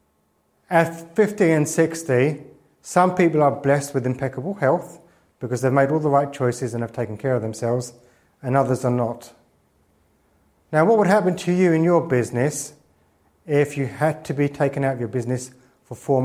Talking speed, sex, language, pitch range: 180 wpm, male, English, 115-145 Hz